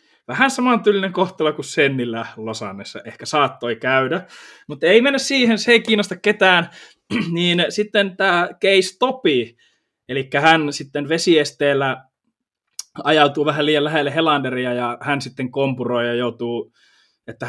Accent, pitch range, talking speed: native, 125-160 Hz, 130 wpm